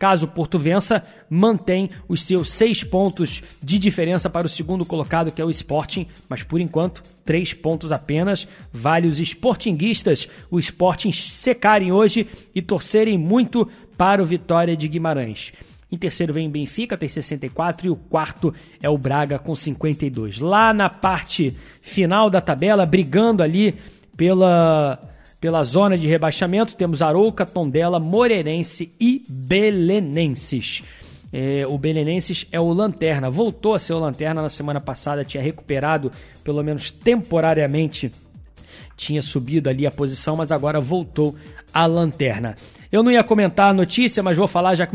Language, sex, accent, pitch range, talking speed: Portuguese, male, Brazilian, 150-190 Hz, 150 wpm